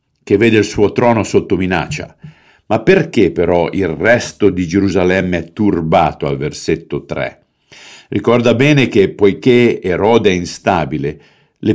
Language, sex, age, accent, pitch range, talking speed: Italian, male, 50-69, native, 90-120 Hz, 140 wpm